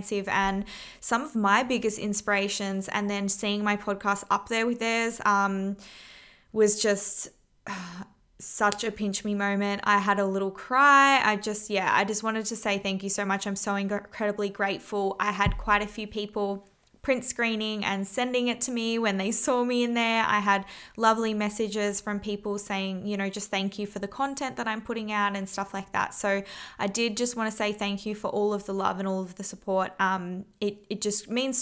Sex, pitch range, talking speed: female, 200-225 Hz, 210 wpm